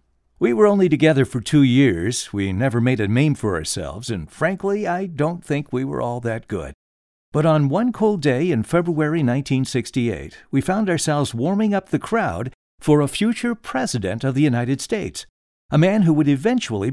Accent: American